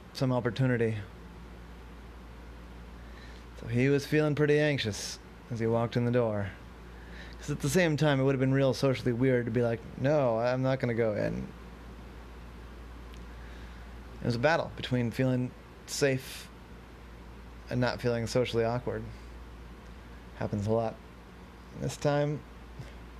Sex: male